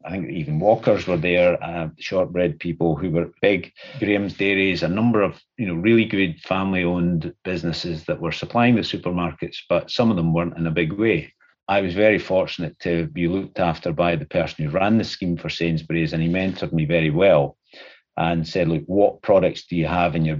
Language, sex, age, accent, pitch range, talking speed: English, male, 50-69, British, 80-95 Hz, 205 wpm